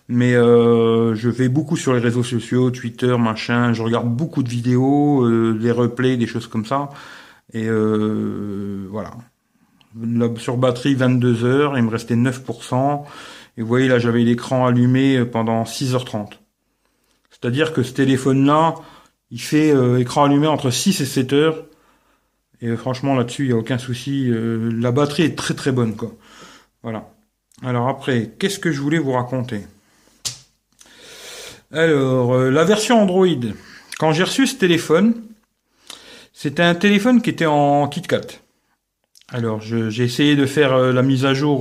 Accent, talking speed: French, 155 wpm